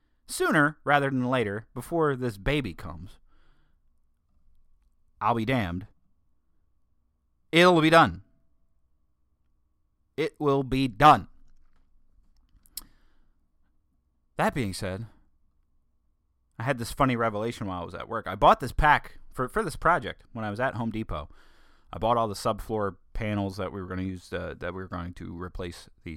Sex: male